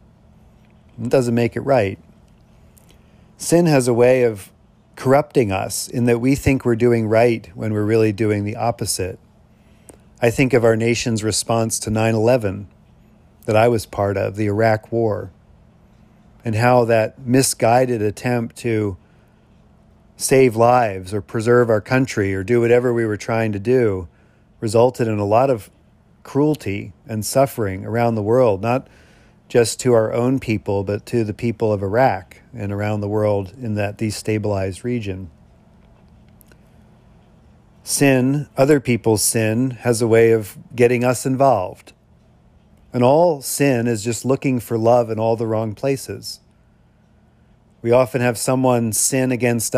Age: 40-59